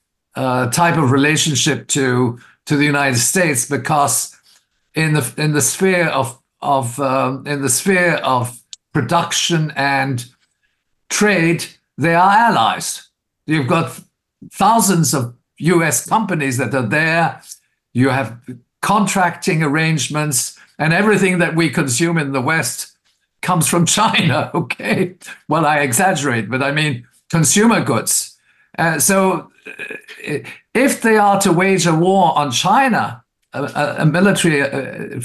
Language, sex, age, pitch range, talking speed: English, male, 50-69, 140-180 Hz, 130 wpm